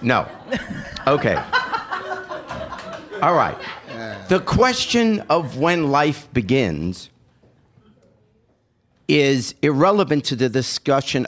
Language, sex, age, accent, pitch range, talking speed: English, male, 50-69, American, 110-155 Hz, 80 wpm